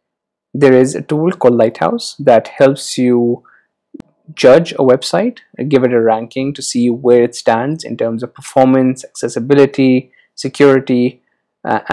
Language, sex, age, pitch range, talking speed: Urdu, male, 20-39, 125-140 Hz, 140 wpm